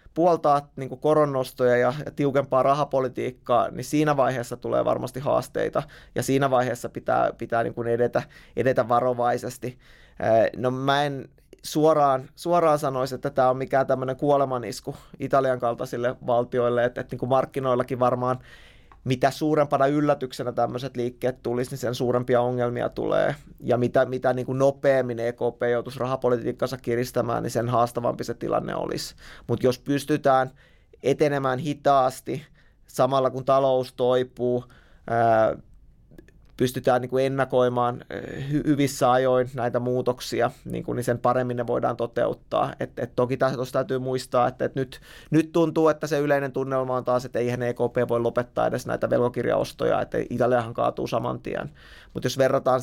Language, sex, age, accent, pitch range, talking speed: Finnish, male, 20-39, native, 125-135 Hz, 140 wpm